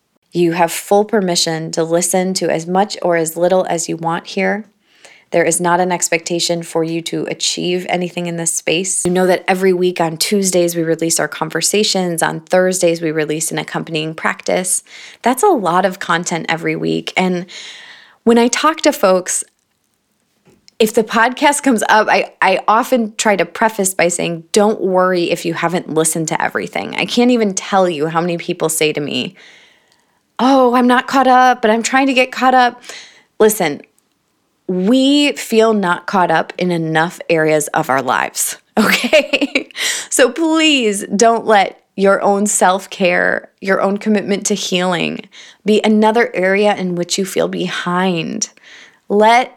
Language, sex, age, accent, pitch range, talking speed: English, female, 20-39, American, 170-220 Hz, 170 wpm